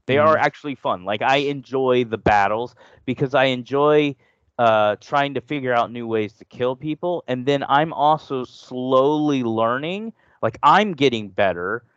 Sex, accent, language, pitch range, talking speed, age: male, American, English, 120-155 Hz, 160 wpm, 30-49